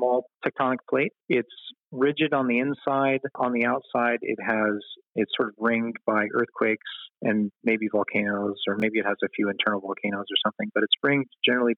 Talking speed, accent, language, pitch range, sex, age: 180 wpm, American, English, 105-125 Hz, male, 40-59